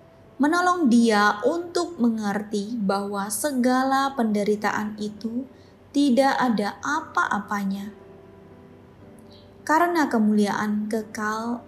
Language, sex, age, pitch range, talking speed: Indonesian, female, 20-39, 210-275 Hz, 70 wpm